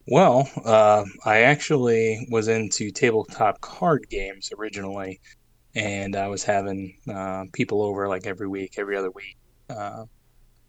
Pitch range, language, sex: 100-120 Hz, English, male